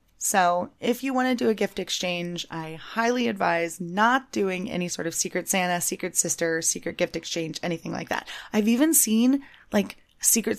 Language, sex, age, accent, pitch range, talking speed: English, female, 20-39, American, 170-230 Hz, 180 wpm